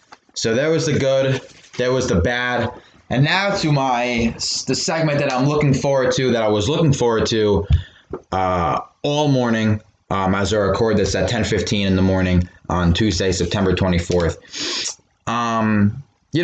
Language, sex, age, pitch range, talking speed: English, male, 20-39, 100-130 Hz, 165 wpm